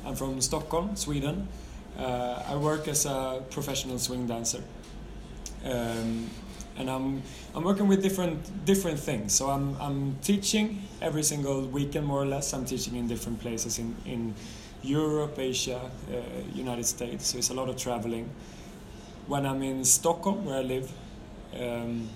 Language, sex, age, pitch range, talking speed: German, male, 20-39, 120-140 Hz, 155 wpm